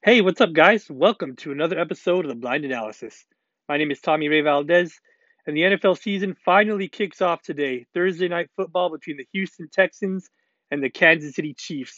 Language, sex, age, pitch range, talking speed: English, male, 30-49, 150-190 Hz, 190 wpm